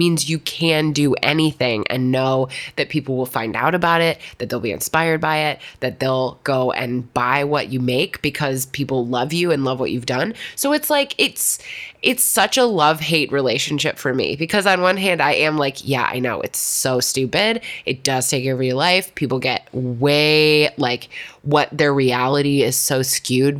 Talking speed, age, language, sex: 200 wpm, 20-39, English, female